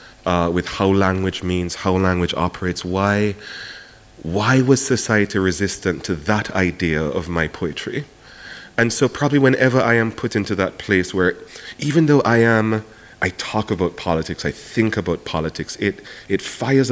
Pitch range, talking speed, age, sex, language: 90-115 Hz, 160 wpm, 30-49, male, English